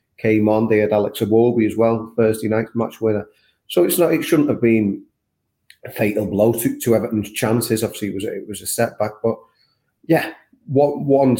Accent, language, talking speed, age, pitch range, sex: British, English, 200 wpm, 30-49, 110-130 Hz, male